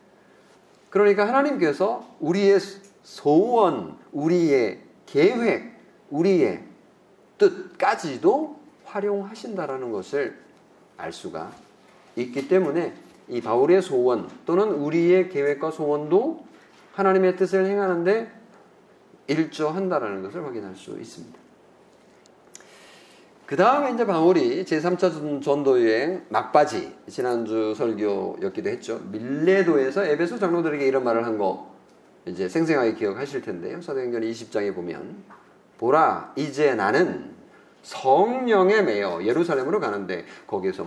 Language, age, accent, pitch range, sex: Korean, 40-59, native, 145-205 Hz, male